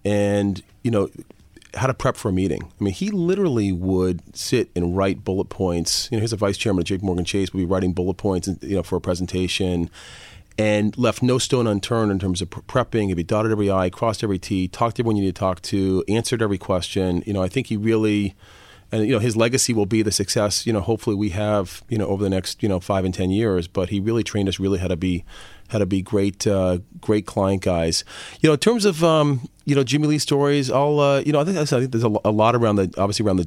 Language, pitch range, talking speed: English, 95-115 Hz, 255 wpm